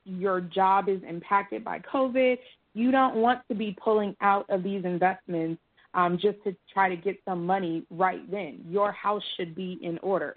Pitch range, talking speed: 185-220 Hz, 185 wpm